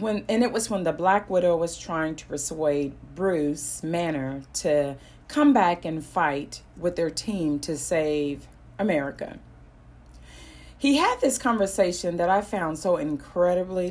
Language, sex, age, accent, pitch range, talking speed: English, female, 40-59, American, 140-220 Hz, 140 wpm